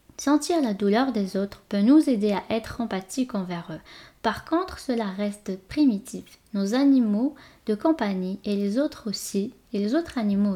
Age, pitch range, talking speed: 10-29, 195-255 Hz, 170 wpm